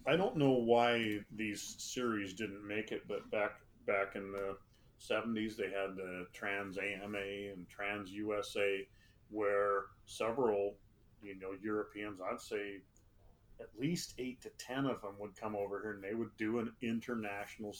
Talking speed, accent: 160 wpm, American